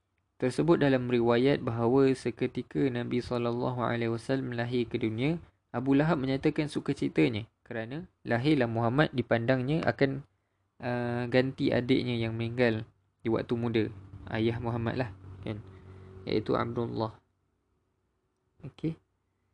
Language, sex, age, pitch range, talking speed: Malay, male, 20-39, 105-130 Hz, 110 wpm